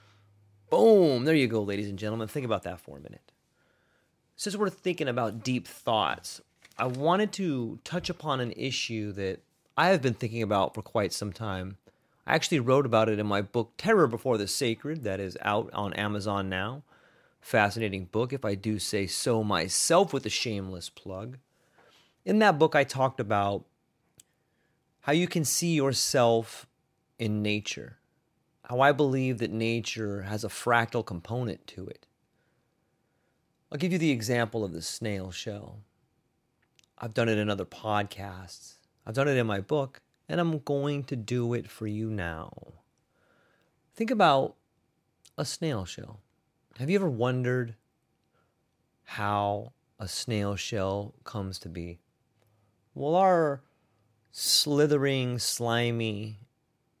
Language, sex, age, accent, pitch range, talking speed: English, male, 30-49, American, 105-140 Hz, 145 wpm